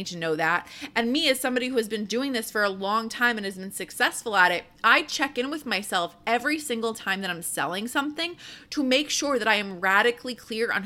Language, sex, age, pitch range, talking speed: English, female, 20-39, 200-250 Hz, 240 wpm